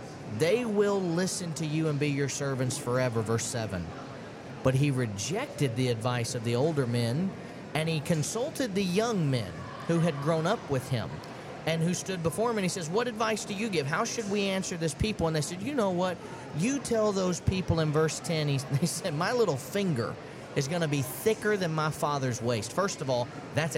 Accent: American